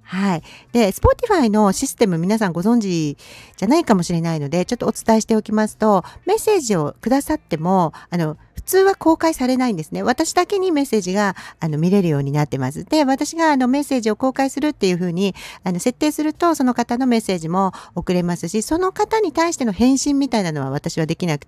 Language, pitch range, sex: Japanese, 155-255 Hz, female